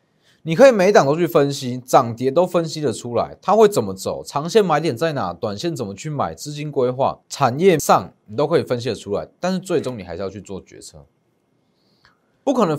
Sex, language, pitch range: male, Chinese, 105-165 Hz